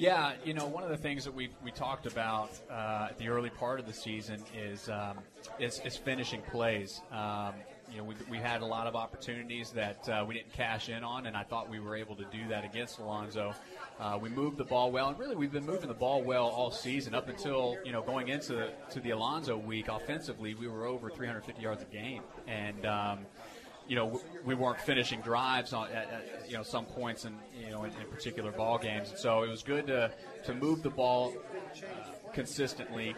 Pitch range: 110-125 Hz